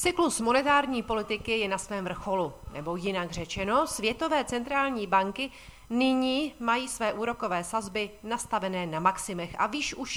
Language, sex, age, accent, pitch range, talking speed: Czech, female, 40-59, native, 185-225 Hz, 140 wpm